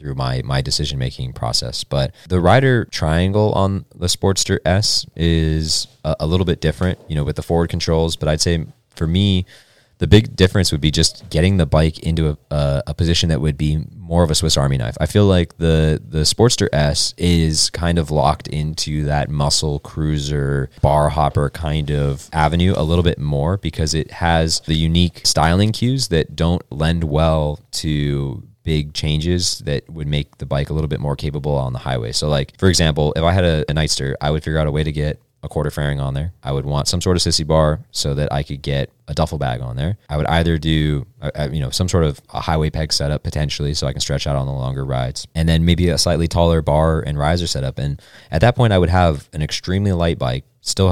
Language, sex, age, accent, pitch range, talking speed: English, male, 20-39, American, 75-85 Hz, 225 wpm